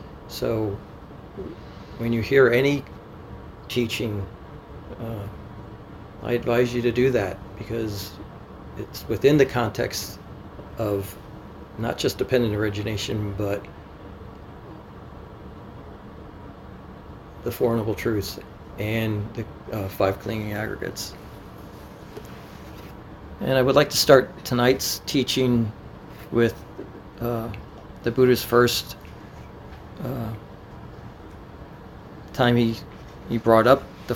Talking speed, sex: 95 wpm, male